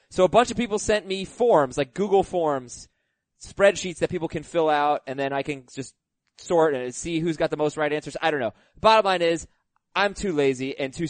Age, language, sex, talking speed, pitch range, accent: 20-39, English, male, 225 wpm, 140-190 Hz, American